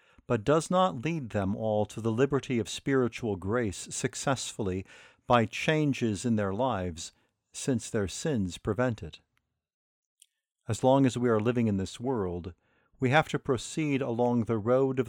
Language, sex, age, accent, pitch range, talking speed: English, male, 50-69, American, 105-130 Hz, 160 wpm